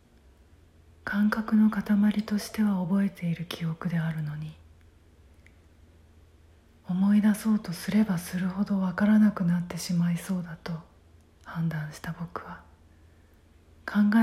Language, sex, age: Japanese, female, 40-59